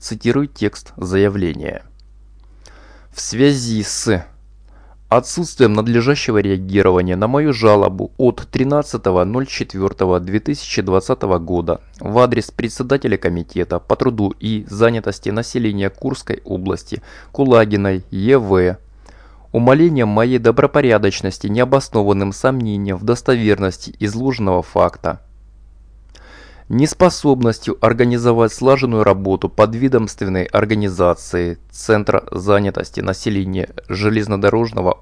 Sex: male